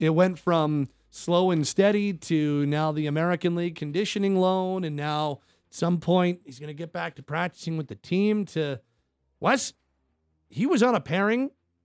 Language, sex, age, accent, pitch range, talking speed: English, male, 40-59, American, 140-185 Hz, 170 wpm